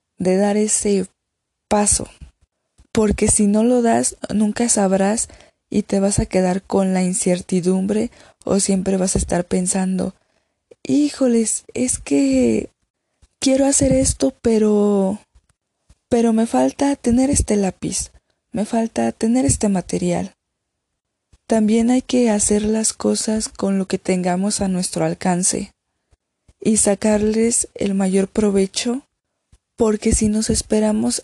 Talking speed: 125 wpm